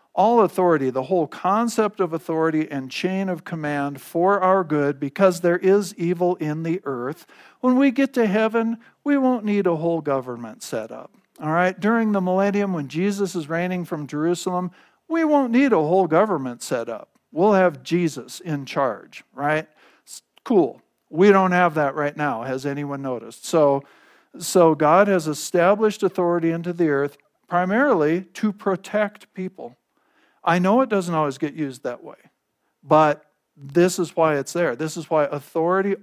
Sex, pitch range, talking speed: male, 140-185 Hz, 170 wpm